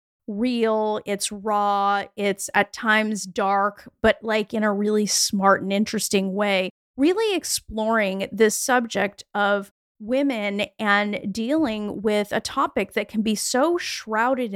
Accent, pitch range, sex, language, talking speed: American, 200-270 Hz, female, English, 130 wpm